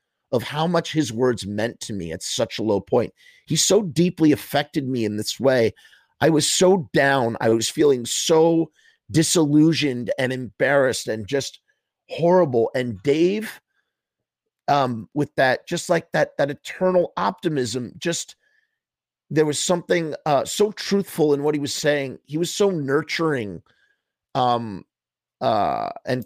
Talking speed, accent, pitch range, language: 150 wpm, American, 125-170 Hz, English